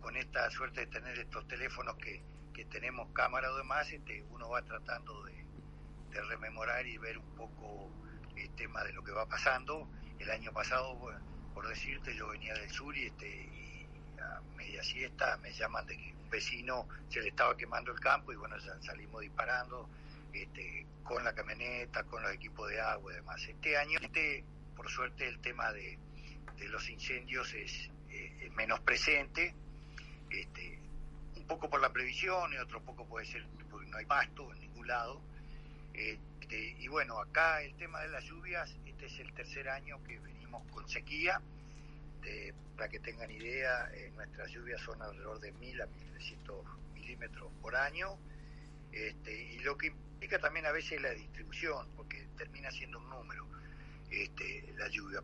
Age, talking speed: 60-79, 180 wpm